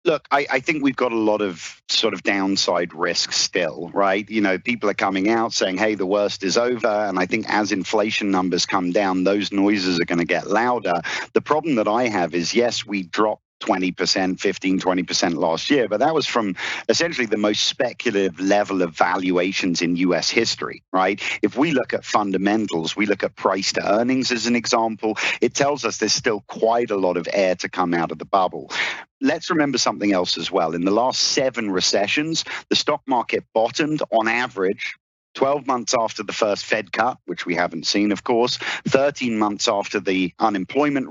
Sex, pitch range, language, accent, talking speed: male, 95-115 Hz, English, British, 205 wpm